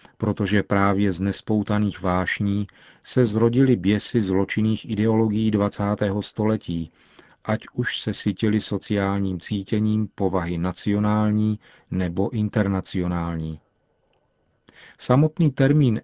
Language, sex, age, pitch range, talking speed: Czech, male, 40-59, 95-110 Hz, 90 wpm